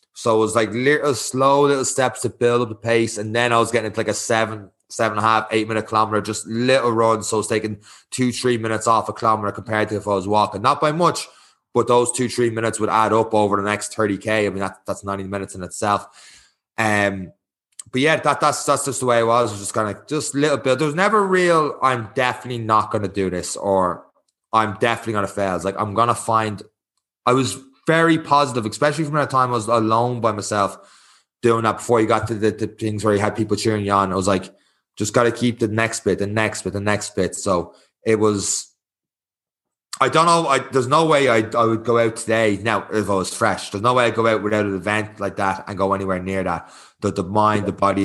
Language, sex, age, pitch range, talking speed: English, male, 20-39, 100-120 Hz, 250 wpm